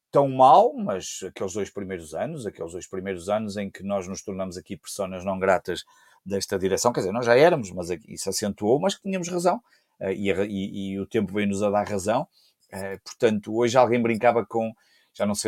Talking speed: 200 wpm